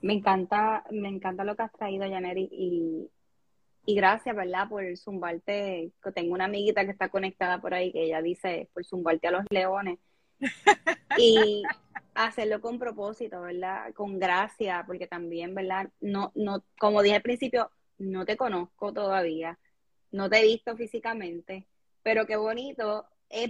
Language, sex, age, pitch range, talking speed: Spanish, female, 20-39, 190-230 Hz, 155 wpm